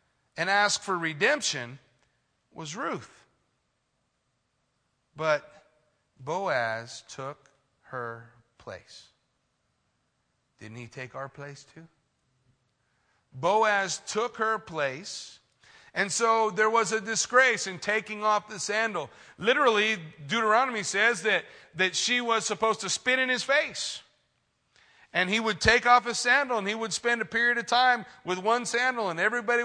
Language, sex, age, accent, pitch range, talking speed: English, male, 40-59, American, 155-225 Hz, 130 wpm